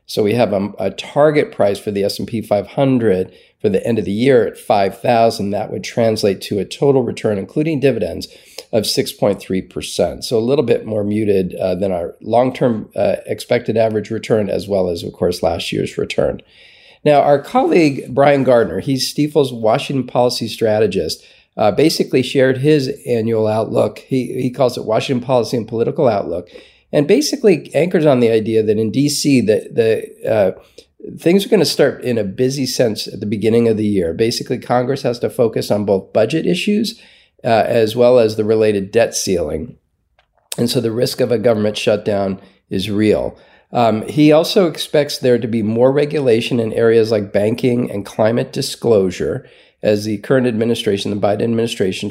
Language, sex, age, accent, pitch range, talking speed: English, male, 40-59, American, 110-140 Hz, 175 wpm